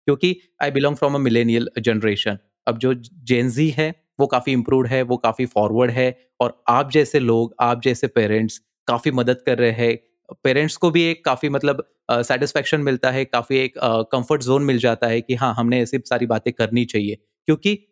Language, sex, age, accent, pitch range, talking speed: Hindi, male, 20-39, native, 115-145 Hz, 195 wpm